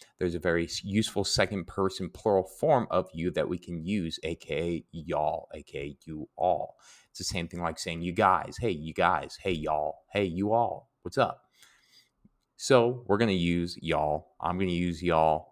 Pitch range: 80-100 Hz